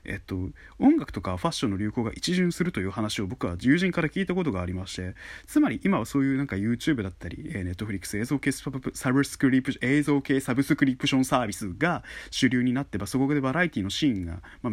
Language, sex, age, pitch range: Japanese, male, 20-39, 95-145 Hz